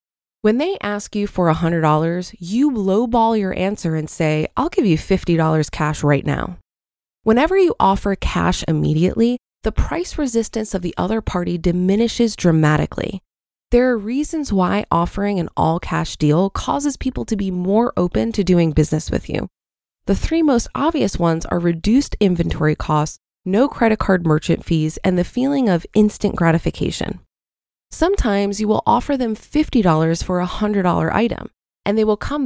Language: English